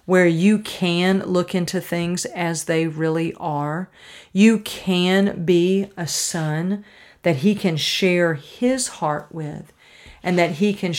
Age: 50-69